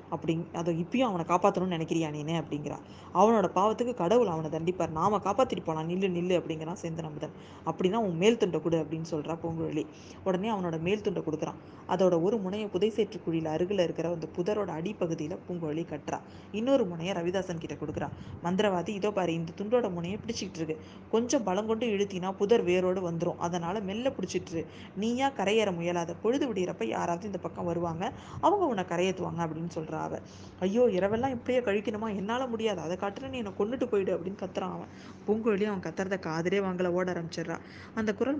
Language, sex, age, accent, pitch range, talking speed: Tamil, female, 20-39, native, 165-210 Hz, 135 wpm